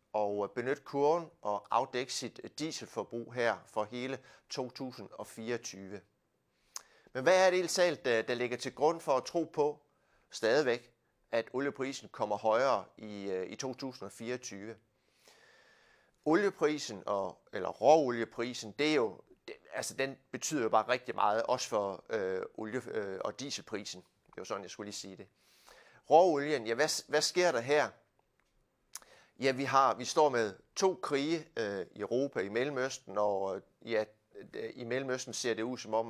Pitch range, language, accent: 110-150 Hz, Danish, native